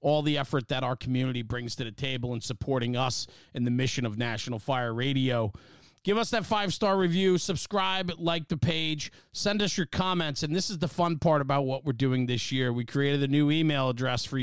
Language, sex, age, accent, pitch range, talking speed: English, male, 40-59, American, 135-170 Hz, 215 wpm